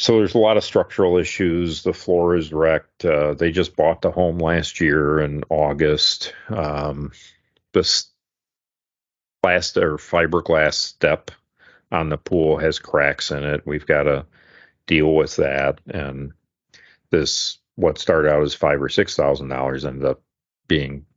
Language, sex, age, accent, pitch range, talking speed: English, male, 40-59, American, 75-90 Hz, 135 wpm